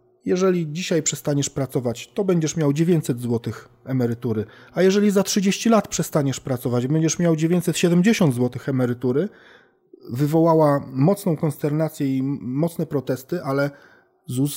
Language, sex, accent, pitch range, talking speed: Polish, male, native, 125-165 Hz, 125 wpm